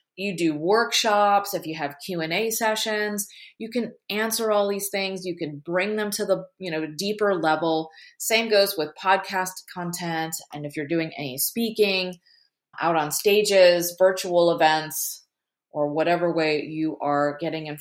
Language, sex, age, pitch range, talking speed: English, female, 30-49, 160-210 Hz, 165 wpm